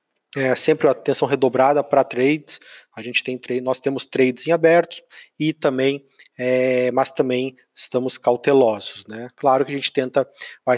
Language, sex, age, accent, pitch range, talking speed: Portuguese, male, 20-39, Brazilian, 130-160 Hz, 160 wpm